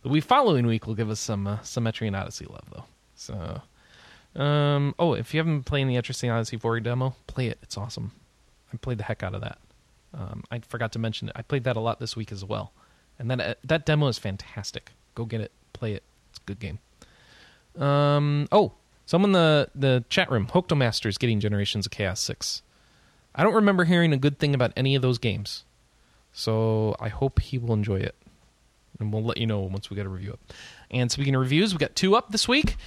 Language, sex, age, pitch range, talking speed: English, male, 20-39, 110-155 Hz, 225 wpm